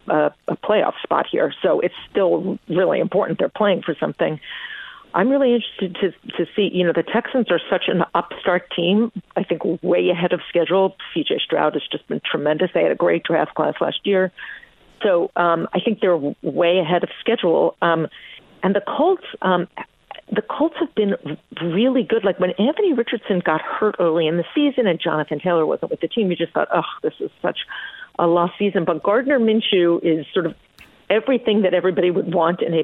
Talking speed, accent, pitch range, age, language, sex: 200 wpm, American, 170-220 Hz, 50-69, English, female